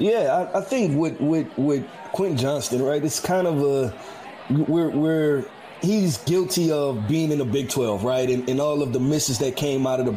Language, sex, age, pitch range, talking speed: English, male, 20-39, 130-165 Hz, 215 wpm